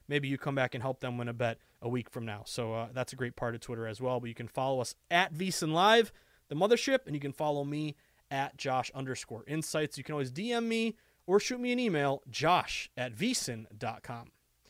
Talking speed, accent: 225 wpm, American